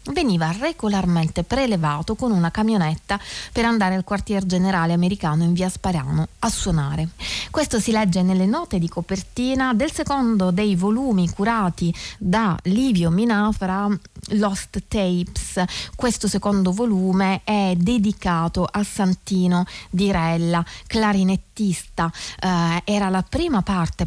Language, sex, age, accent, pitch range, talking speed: Italian, female, 30-49, native, 170-210 Hz, 120 wpm